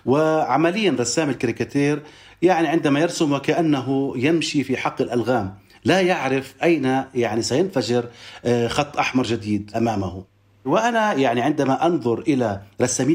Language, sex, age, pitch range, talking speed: Arabic, male, 40-59, 120-145 Hz, 120 wpm